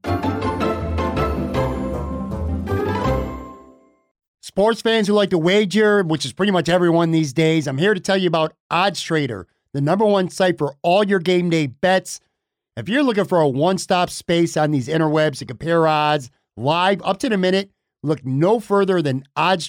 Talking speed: 170 wpm